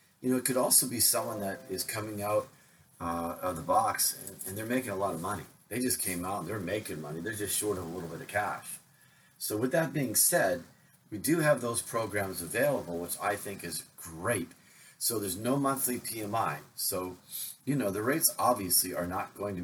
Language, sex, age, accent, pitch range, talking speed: English, male, 40-59, American, 85-115 Hz, 215 wpm